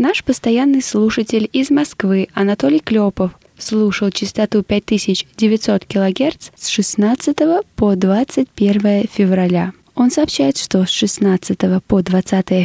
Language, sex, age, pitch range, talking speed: Russian, female, 20-39, 190-235 Hz, 110 wpm